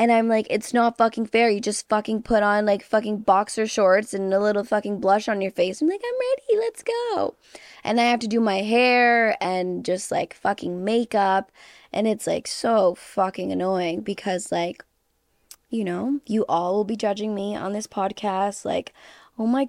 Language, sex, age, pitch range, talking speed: English, female, 20-39, 190-235 Hz, 195 wpm